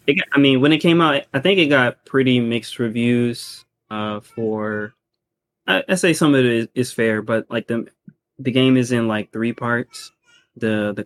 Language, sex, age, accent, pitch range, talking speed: English, male, 20-39, American, 110-125 Hz, 200 wpm